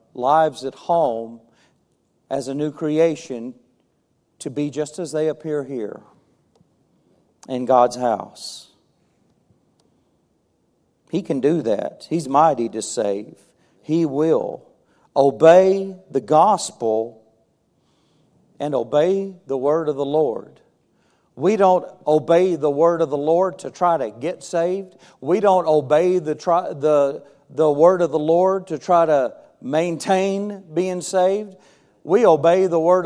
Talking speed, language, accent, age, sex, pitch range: 125 wpm, English, American, 50-69, male, 140-175 Hz